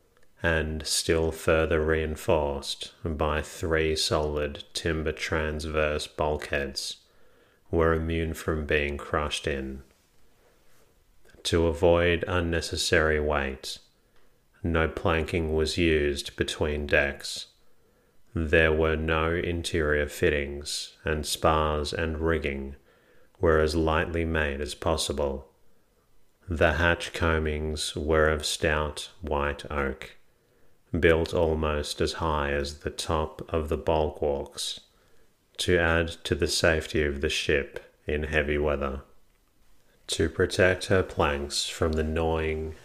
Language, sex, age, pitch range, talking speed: English, male, 30-49, 75-80 Hz, 110 wpm